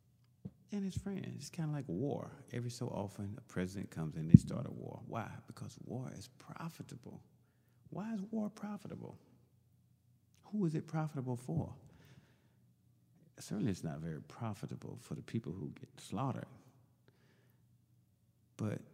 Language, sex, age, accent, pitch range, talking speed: English, male, 50-69, American, 80-125 Hz, 145 wpm